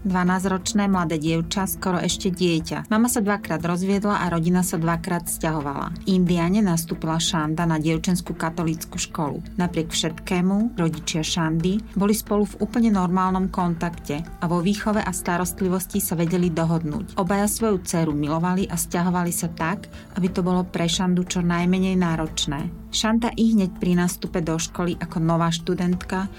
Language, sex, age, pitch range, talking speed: Slovak, female, 30-49, 165-190 Hz, 155 wpm